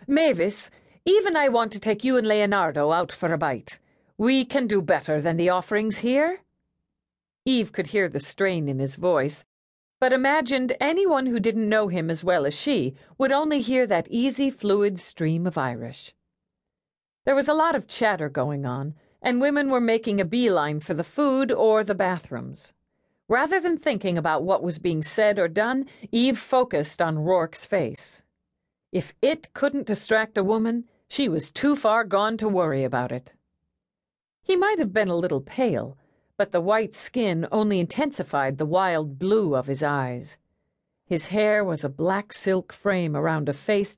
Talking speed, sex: 175 wpm, female